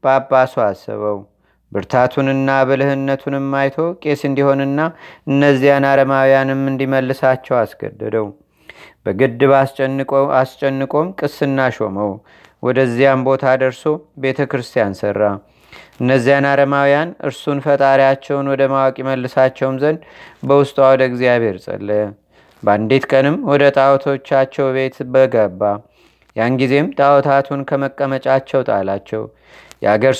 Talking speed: 85 wpm